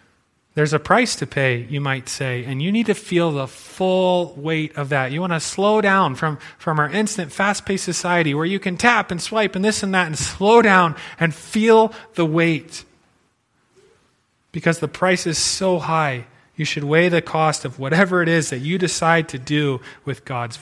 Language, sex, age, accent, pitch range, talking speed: English, male, 30-49, American, 145-185 Hz, 200 wpm